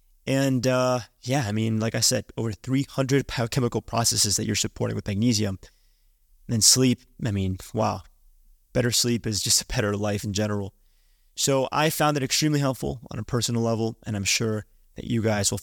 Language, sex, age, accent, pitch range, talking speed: English, male, 20-39, American, 105-130 Hz, 190 wpm